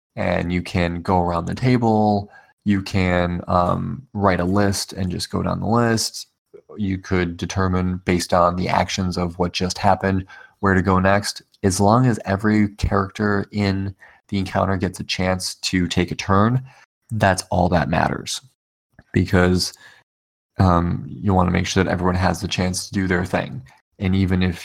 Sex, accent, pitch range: male, American, 90-100 Hz